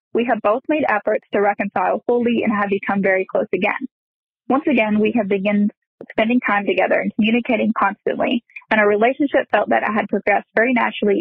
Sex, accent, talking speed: female, American, 185 wpm